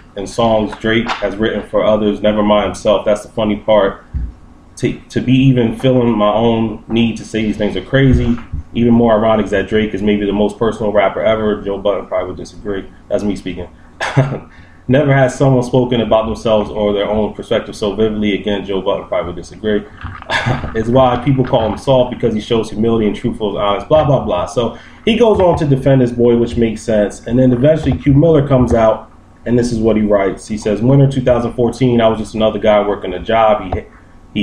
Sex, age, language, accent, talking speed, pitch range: male, 20-39, English, American, 215 wpm, 100-120 Hz